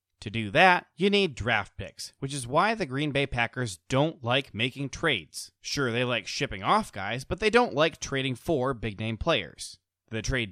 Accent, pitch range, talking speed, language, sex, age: American, 110-155 Hz, 195 wpm, English, male, 30-49